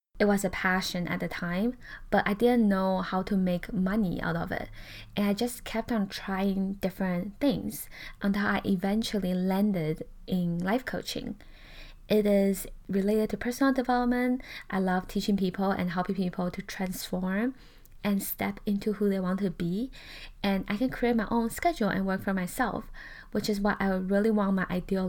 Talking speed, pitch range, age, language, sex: 180 wpm, 190-225 Hz, 10-29, English, female